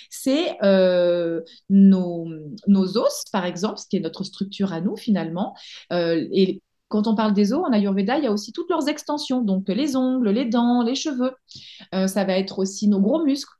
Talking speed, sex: 200 wpm, female